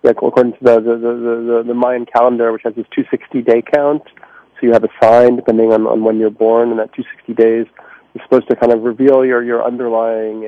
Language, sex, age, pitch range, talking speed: English, male, 40-59, 115-125 Hz, 235 wpm